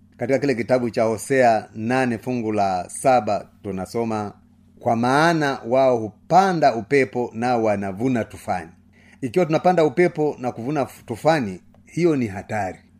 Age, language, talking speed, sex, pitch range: 30-49, Swahili, 125 wpm, male, 110-140 Hz